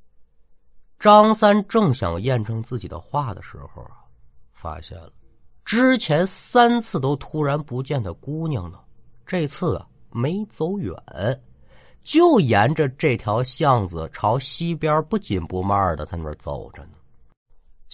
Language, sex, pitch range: Chinese, male, 90-155 Hz